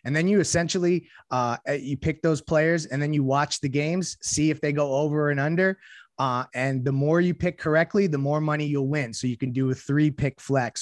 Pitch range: 135-155 Hz